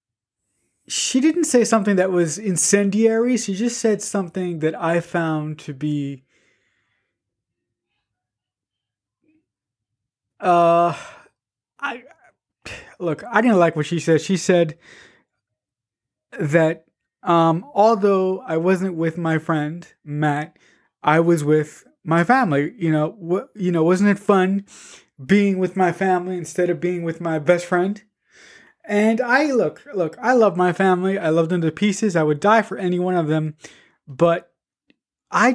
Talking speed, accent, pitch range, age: 140 wpm, American, 160-205 Hz, 20-39